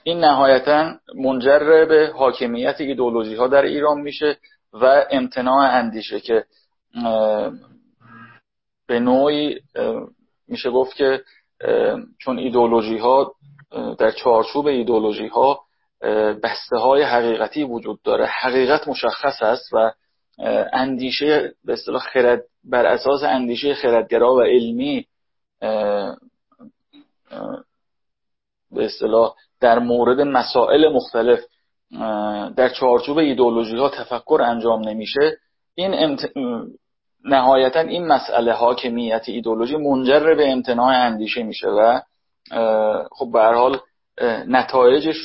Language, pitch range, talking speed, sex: Persian, 120-160 Hz, 95 wpm, male